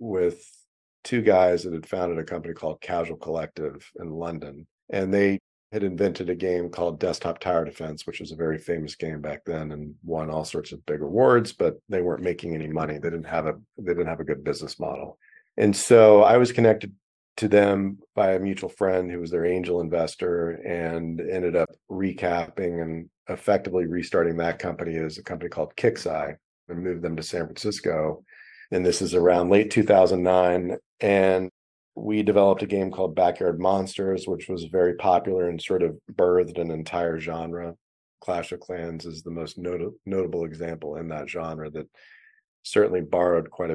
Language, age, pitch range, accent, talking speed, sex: English, 40-59, 80-95 Hz, American, 180 wpm, male